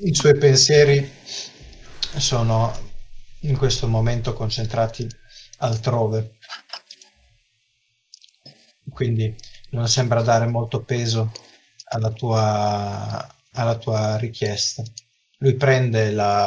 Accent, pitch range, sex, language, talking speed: native, 110-125 Hz, male, Italian, 85 wpm